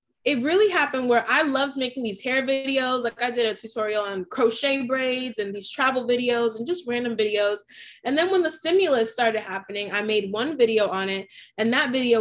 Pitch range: 210-265 Hz